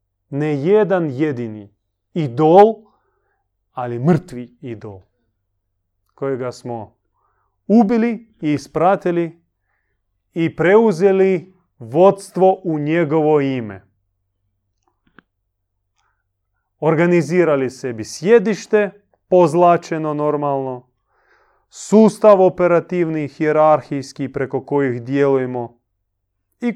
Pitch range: 100-160 Hz